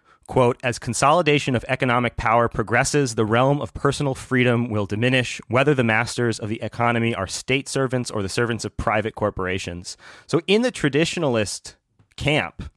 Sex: male